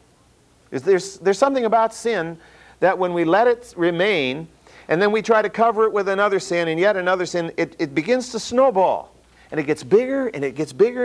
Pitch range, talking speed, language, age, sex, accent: 125-205 Hz, 210 wpm, English, 50-69, male, American